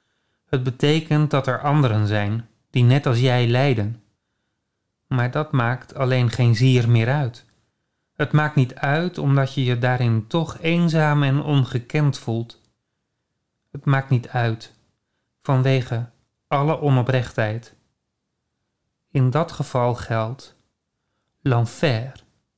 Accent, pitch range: Dutch, 115-150 Hz